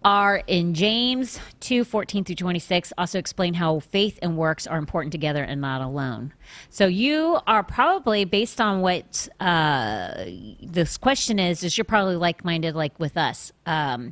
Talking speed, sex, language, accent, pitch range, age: 160 wpm, female, English, American, 160-200 Hz, 40-59